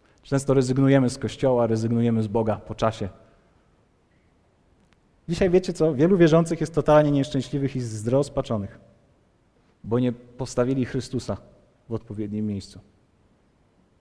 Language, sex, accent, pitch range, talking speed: Polish, male, native, 125-160 Hz, 110 wpm